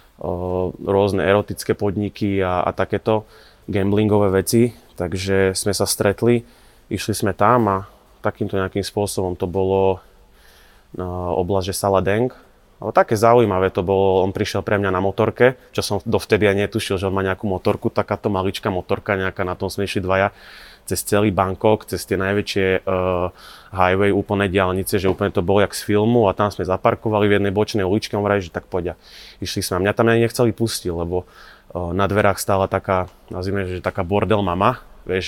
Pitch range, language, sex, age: 95-105 Hz, Slovak, male, 20-39